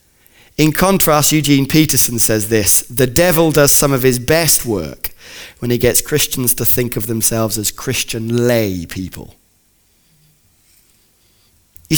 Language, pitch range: English, 120-175 Hz